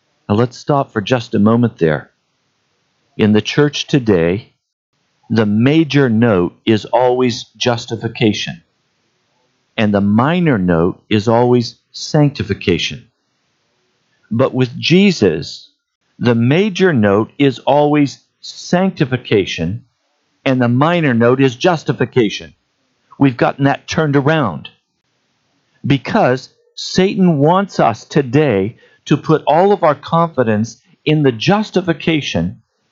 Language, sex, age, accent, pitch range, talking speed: English, male, 50-69, American, 120-160 Hz, 110 wpm